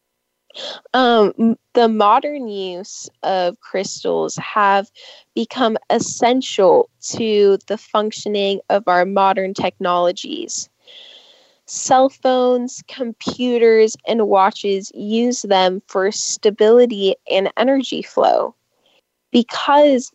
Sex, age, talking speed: female, 10-29, 85 wpm